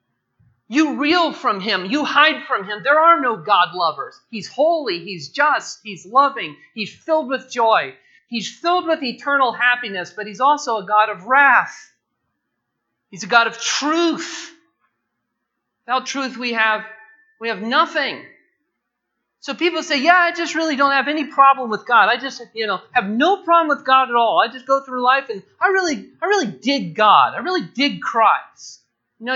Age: 40-59